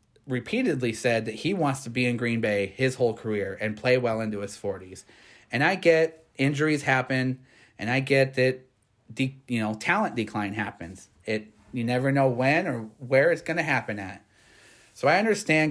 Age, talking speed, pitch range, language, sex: 30-49, 185 wpm, 110-135 Hz, English, male